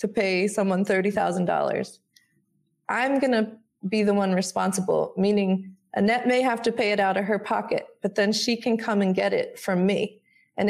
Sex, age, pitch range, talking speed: female, 20-39, 190-225 Hz, 180 wpm